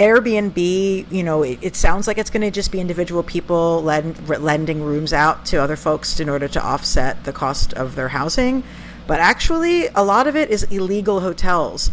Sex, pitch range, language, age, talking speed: female, 145-190 Hz, English, 50-69, 200 wpm